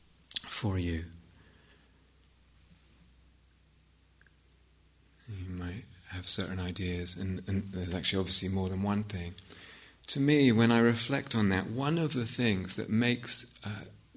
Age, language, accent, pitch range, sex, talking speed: 30-49, English, British, 95-120 Hz, male, 125 wpm